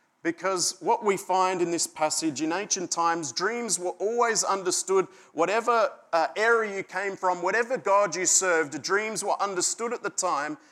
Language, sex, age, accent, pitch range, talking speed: English, male, 30-49, Australian, 160-205 Hz, 170 wpm